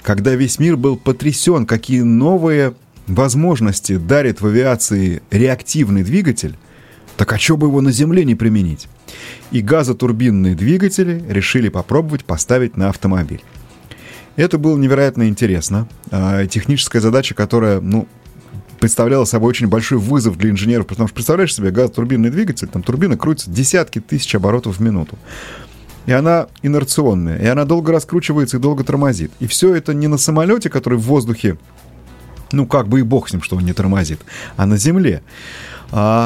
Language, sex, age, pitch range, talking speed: Russian, male, 30-49, 105-145 Hz, 155 wpm